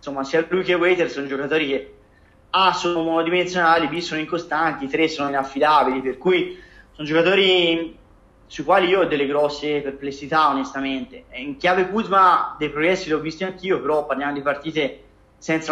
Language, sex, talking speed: Italian, male, 170 wpm